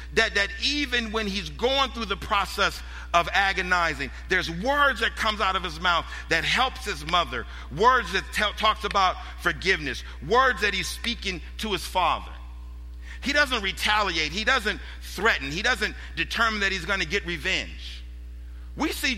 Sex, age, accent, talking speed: male, 50-69, American, 165 wpm